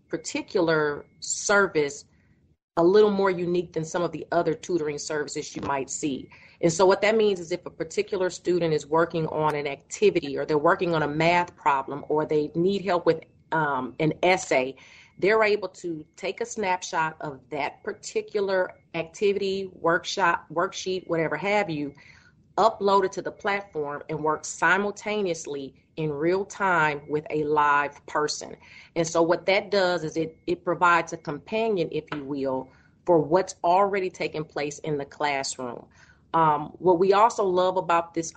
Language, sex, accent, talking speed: English, female, American, 165 wpm